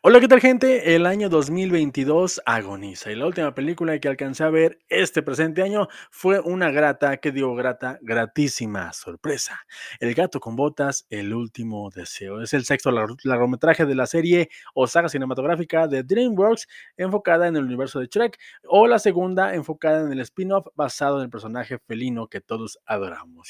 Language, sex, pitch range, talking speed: Spanish, male, 130-180 Hz, 170 wpm